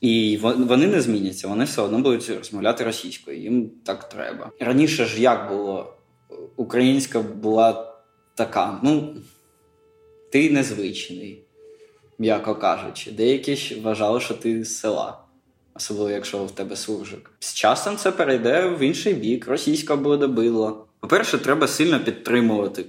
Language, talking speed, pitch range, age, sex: Ukrainian, 130 wpm, 105-125 Hz, 20-39, male